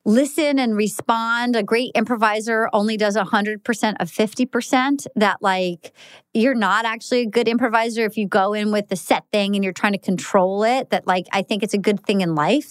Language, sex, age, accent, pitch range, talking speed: English, female, 30-49, American, 200-255 Hz, 205 wpm